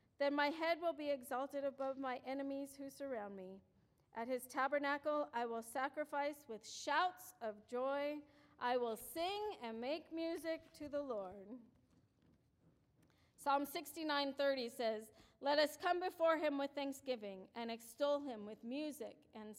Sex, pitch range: female, 240-300 Hz